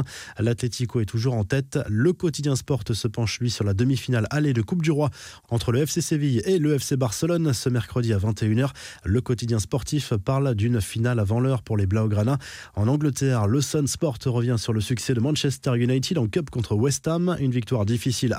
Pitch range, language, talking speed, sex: 110-145 Hz, French, 200 wpm, male